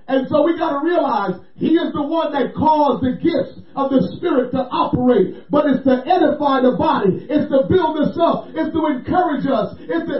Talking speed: 210 wpm